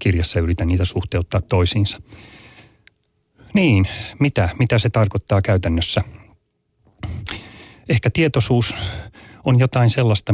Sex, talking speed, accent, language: male, 95 wpm, native, Finnish